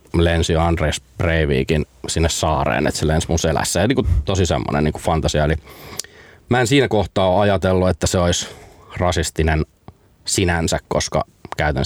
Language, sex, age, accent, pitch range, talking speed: Finnish, male, 30-49, native, 80-95 Hz, 135 wpm